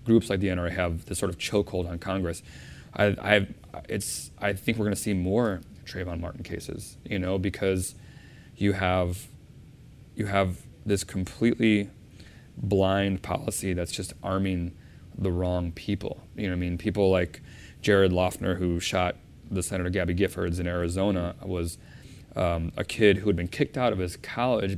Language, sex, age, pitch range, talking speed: English, male, 20-39, 90-110 Hz, 170 wpm